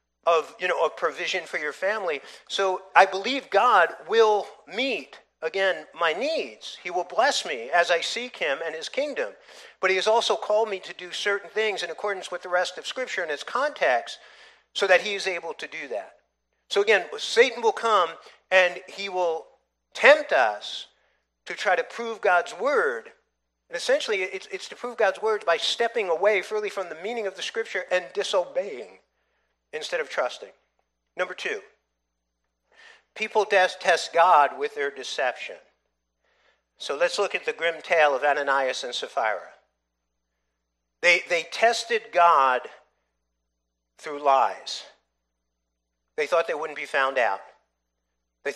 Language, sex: English, male